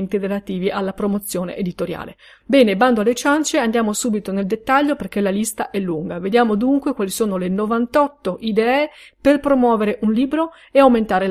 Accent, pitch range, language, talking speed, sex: native, 200-265 Hz, Italian, 160 wpm, female